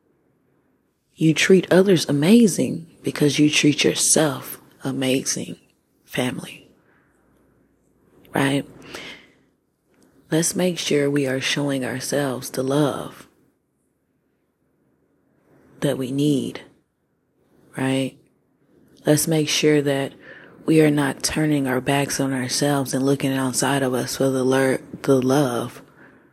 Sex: female